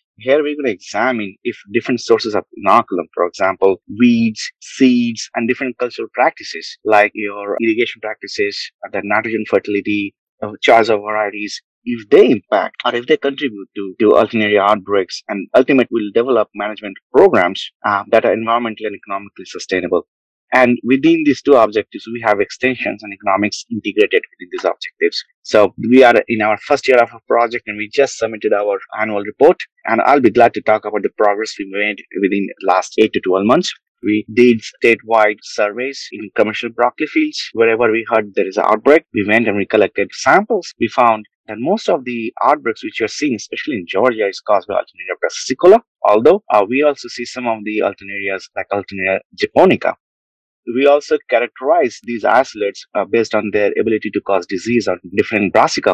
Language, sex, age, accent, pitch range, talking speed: English, male, 30-49, Indian, 105-145 Hz, 180 wpm